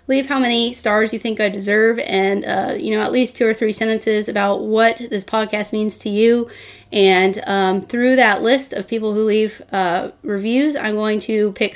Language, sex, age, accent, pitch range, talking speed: English, female, 20-39, American, 200-230 Hz, 205 wpm